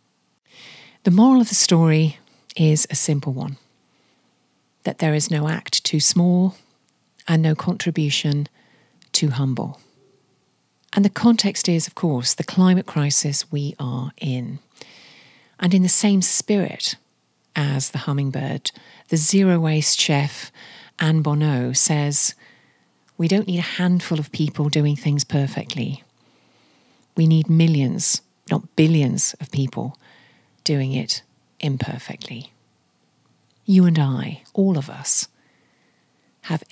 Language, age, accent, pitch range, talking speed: English, 40-59, British, 140-180 Hz, 120 wpm